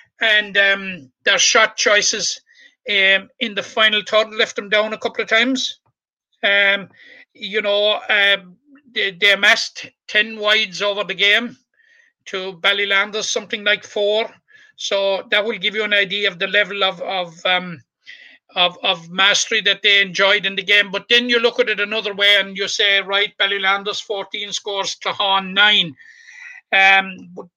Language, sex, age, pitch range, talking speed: English, male, 60-79, 195-240 Hz, 160 wpm